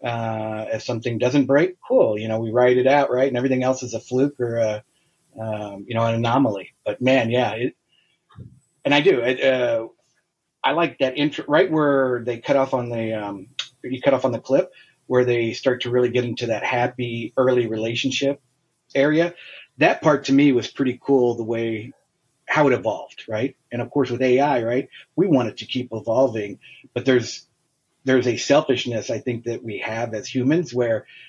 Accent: American